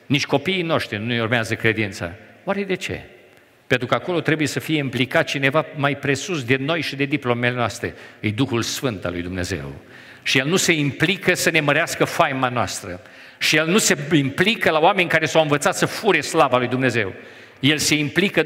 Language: Romanian